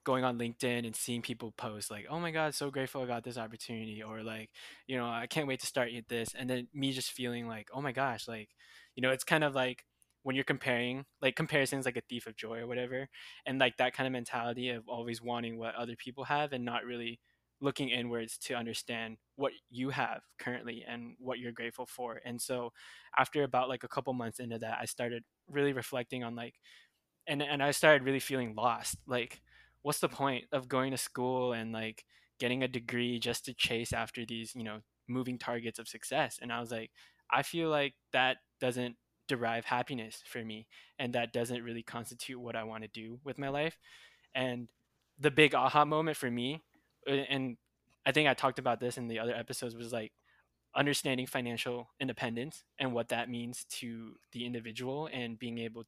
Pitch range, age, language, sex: 115-130 Hz, 20-39, English, male